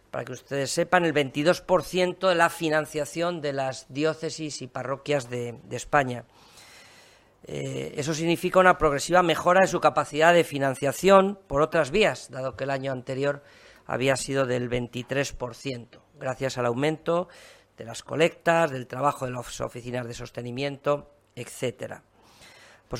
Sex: female